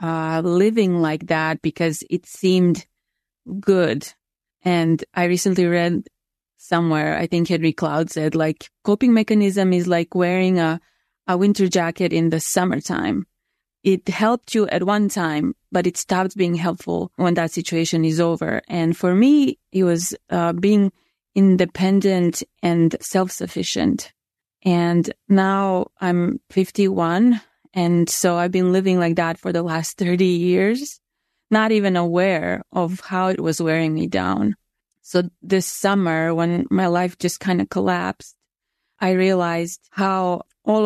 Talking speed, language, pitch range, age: 140 wpm, English, 170-195 Hz, 20-39